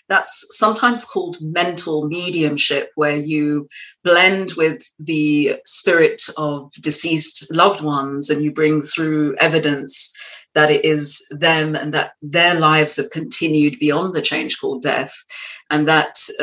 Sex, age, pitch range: female, 40-59, 150-175 Hz